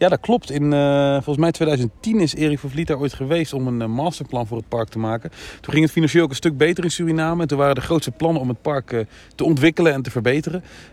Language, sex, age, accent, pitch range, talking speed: Dutch, male, 40-59, Dutch, 115-135 Hz, 265 wpm